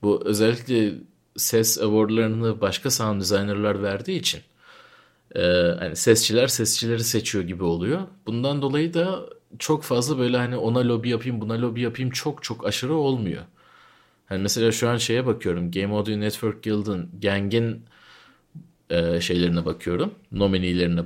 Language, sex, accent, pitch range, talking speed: Turkish, male, native, 95-120 Hz, 140 wpm